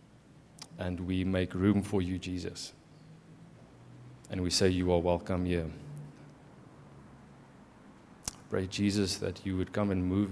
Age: 30-49